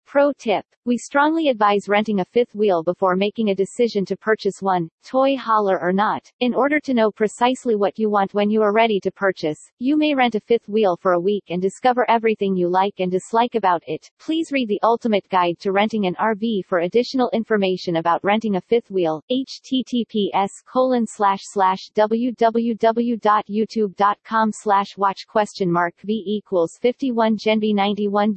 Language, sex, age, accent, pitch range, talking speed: English, female, 40-59, American, 190-235 Hz, 175 wpm